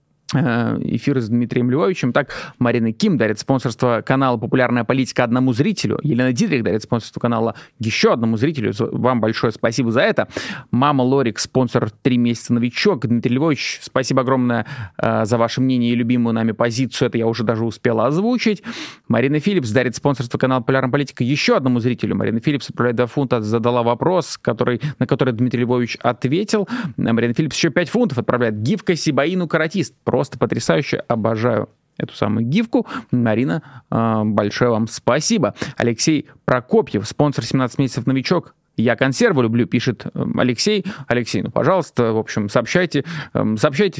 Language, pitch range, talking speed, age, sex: Russian, 120-150 Hz, 155 wpm, 30-49, male